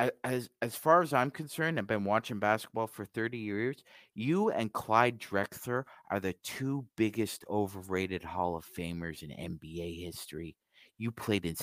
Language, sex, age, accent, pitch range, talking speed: English, male, 30-49, American, 95-130 Hz, 160 wpm